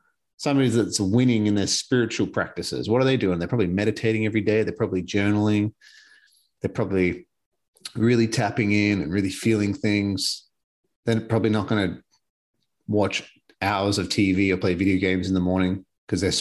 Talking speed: 170 wpm